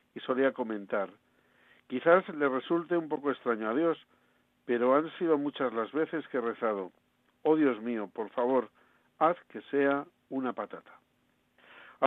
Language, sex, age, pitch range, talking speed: Spanish, male, 60-79, 125-160 Hz, 155 wpm